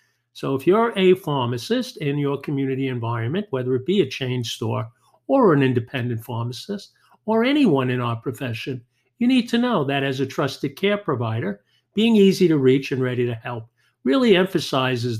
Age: 50-69